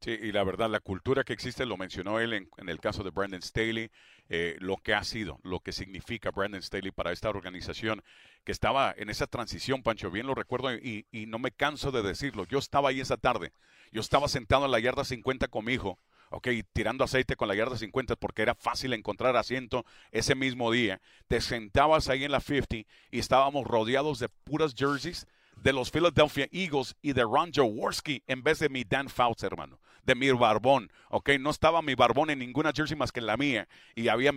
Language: English